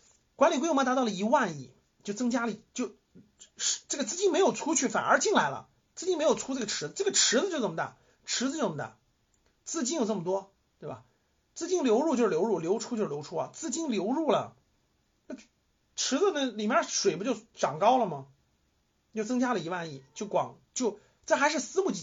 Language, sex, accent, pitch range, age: Chinese, male, native, 165-250 Hz, 30-49